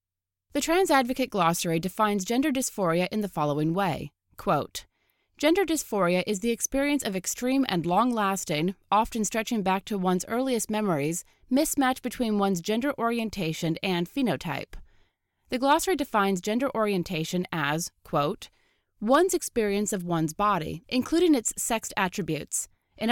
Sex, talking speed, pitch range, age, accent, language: female, 140 wpm, 175-245 Hz, 30-49, American, English